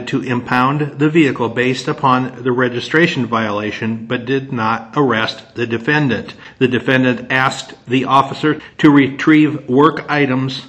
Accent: American